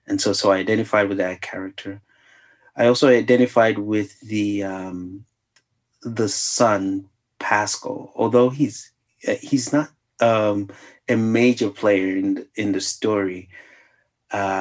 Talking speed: 125 wpm